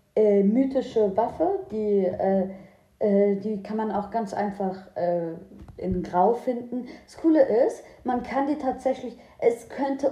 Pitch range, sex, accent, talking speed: 205-255 Hz, female, German, 135 wpm